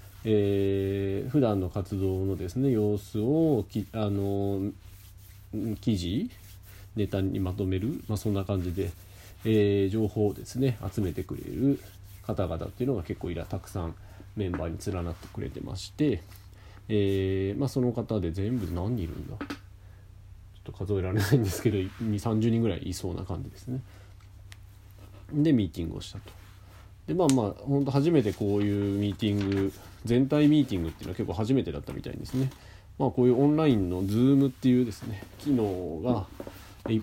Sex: male